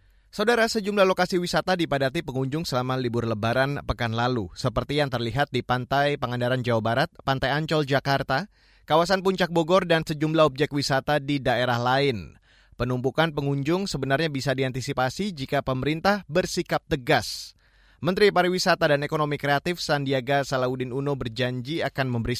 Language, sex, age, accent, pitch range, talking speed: Indonesian, male, 20-39, native, 125-165 Hz, 140 wpm